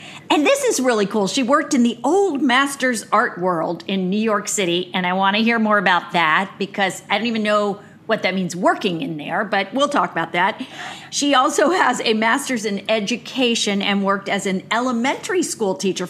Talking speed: 205 wpm